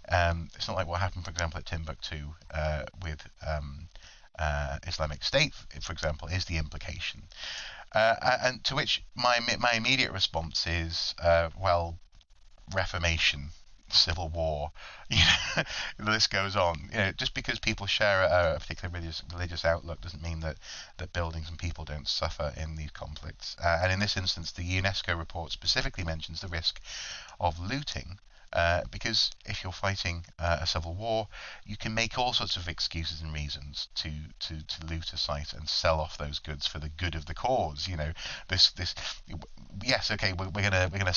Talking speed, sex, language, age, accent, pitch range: 180 wpm, male, English, 30-49, British, 80-95 Hz